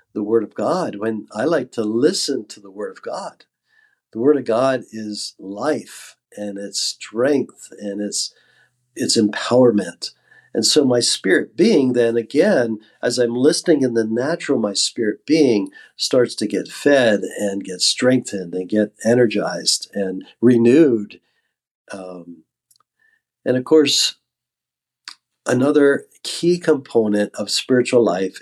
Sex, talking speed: male, 135 wpm